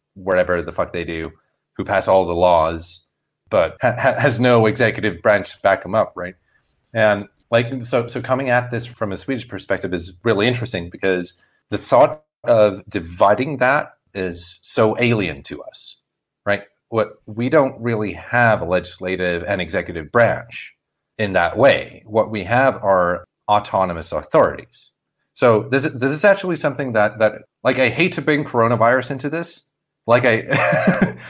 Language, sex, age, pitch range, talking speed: English, male, 30-49, 95-130 Hz, 160 wpm